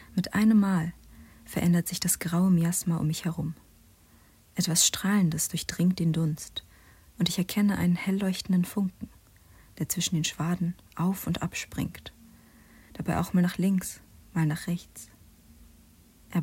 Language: German